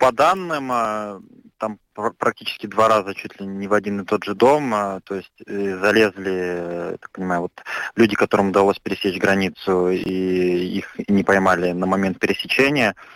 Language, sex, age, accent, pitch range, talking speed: Russian, male, 20-39, native, 90-105 Hz, 150 wpm